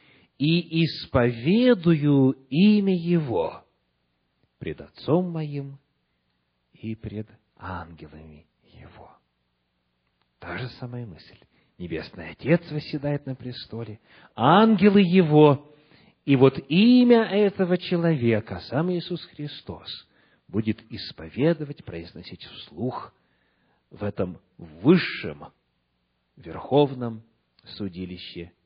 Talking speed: 80 wpm